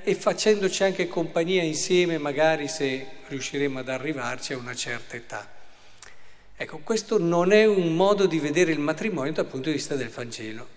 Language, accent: Italian, native